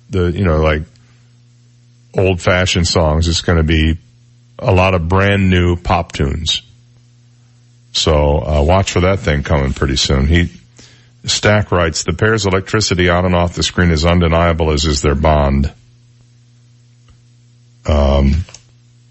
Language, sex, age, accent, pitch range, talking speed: English, male, 50-69, American, 80-120 Hz, 140 wpm